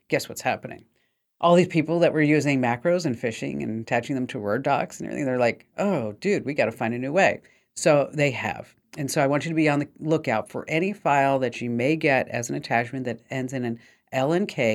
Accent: American